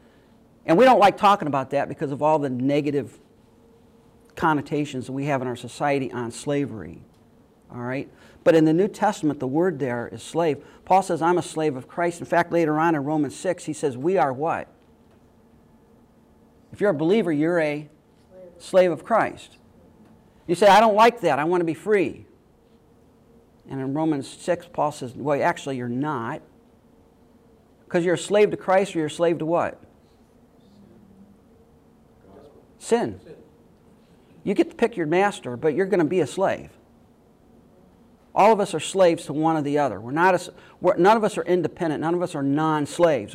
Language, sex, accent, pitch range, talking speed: English, male, American, 145-175 Hz, 185 wpm